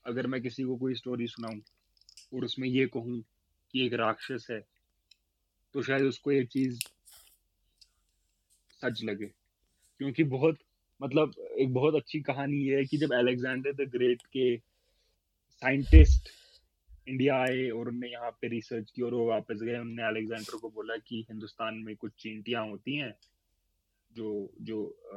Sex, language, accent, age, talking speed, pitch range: male, Hindi, native, 20-39, 150 wpm, 105-125 Hz